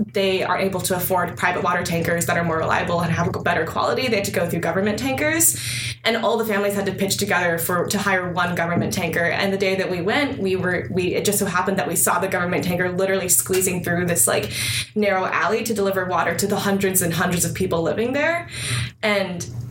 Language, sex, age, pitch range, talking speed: English, female, 20-39, 170-200 Hz, 235 wpm